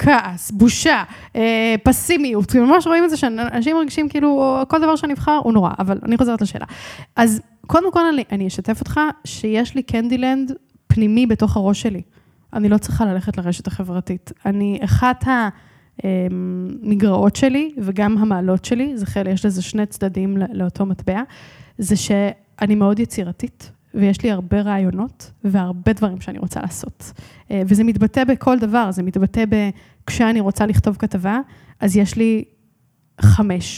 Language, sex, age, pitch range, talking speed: Hebrew, female, 10-29, 200-265 Hz, 140 wpm